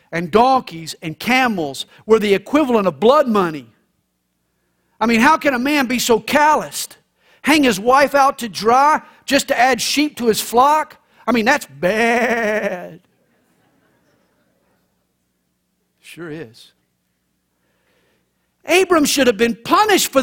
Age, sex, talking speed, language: 50-69, male, 130 wpm, English